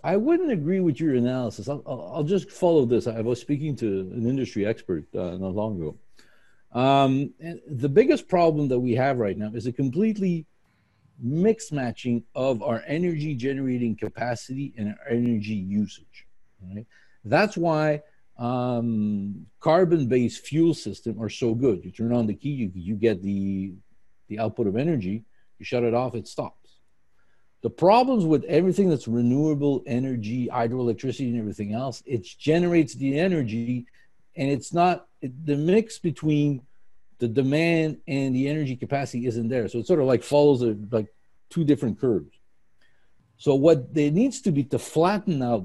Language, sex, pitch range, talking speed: English, male, 115-150 Hz, 160 wpm